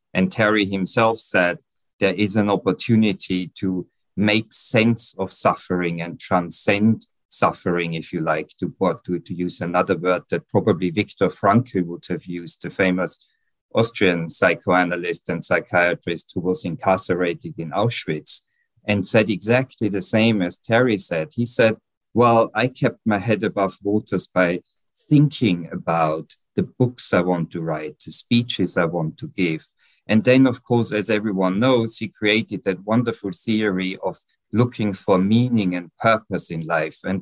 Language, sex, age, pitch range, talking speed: English, male, 40-59, 90-110 Hz, 155 wpm